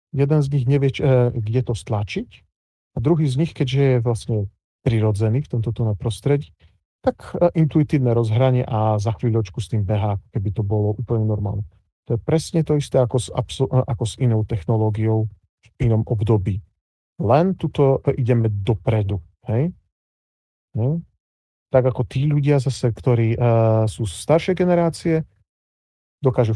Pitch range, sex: 110-135 Hz, male